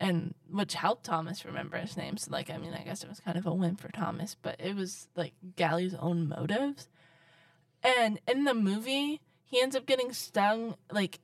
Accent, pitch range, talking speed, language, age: American, 165-235 Hz, 205 wpm, English, 10-29